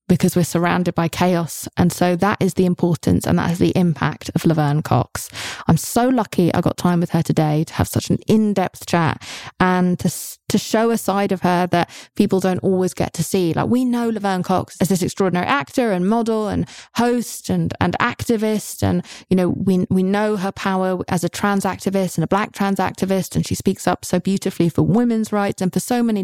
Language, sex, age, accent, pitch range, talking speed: English, female, 20-39, British, 170-200 Hz, 215 wpm